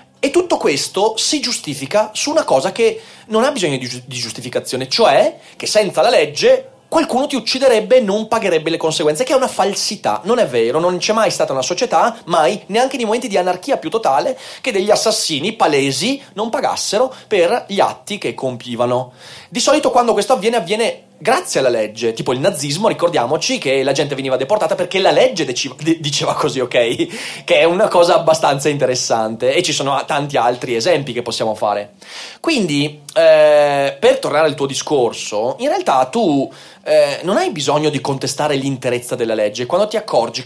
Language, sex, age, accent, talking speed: Italian, male, 30-49, native, 180 wpm